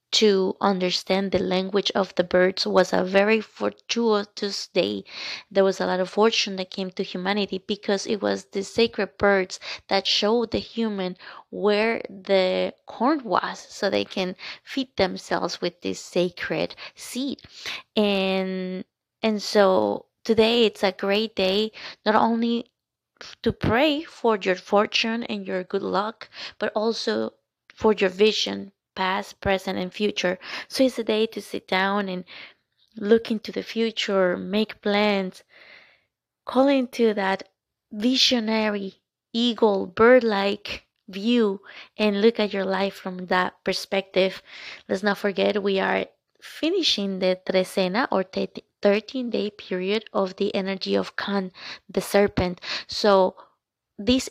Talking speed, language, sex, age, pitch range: 135 wpm, English, female, 20-39, 190-220 Hz